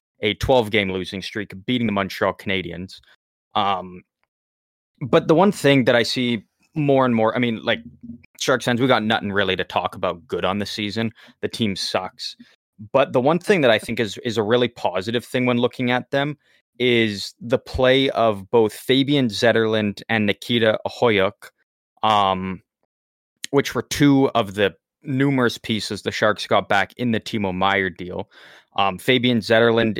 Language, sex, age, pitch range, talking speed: English, male, 20-39, 100-130 Hz, 165 wpm